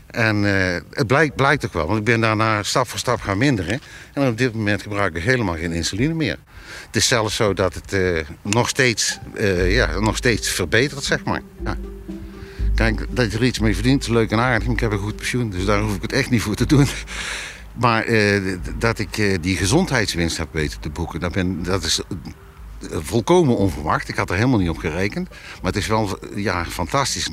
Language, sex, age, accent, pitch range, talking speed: Dutch, male, 60-79, Dutch, 95-130 Hz, 205 wpm